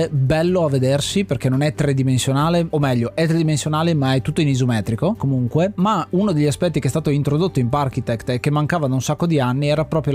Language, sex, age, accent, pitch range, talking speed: Italian, male, 20-39, native, 130-160 Hz, 220 wpm